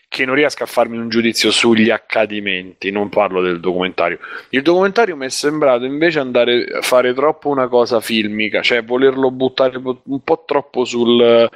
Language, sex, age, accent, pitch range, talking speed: Italian, male, 20-39, native, 100-130 Hz, 170 wpm